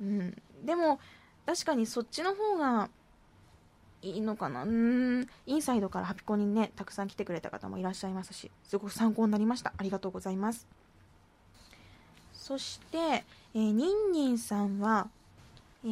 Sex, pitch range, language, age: female, 200-295 Hz, Japanese, 20-39